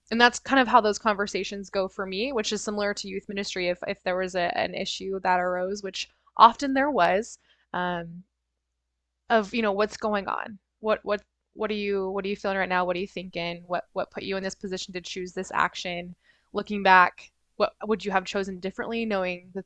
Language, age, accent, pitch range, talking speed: English, 20-39, American, 185-220 Hz, 220 wpm